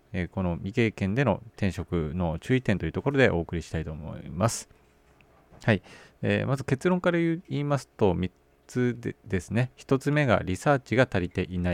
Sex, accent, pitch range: male, native, 90-130 Hz